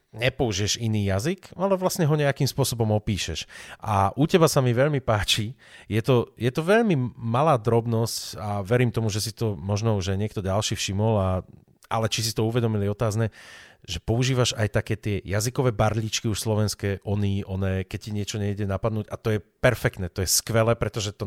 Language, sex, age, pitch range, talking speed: Slovak, male, 30-49, 100-115 Hz, 185 wpm